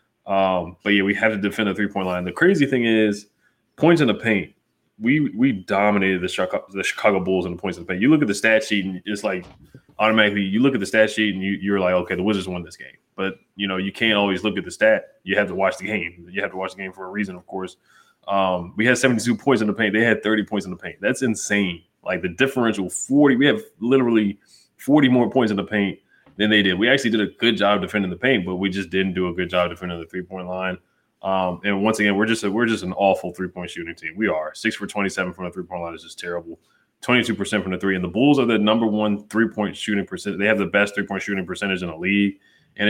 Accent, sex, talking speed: American, male, 265 wpm